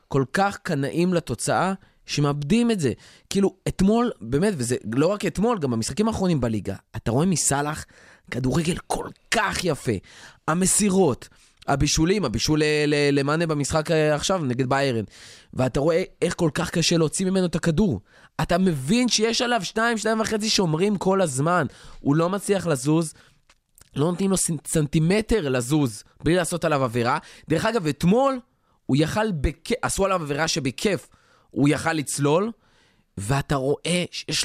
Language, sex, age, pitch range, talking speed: Hebrew, male, 20-39, 135-195 Hz, 140 wpm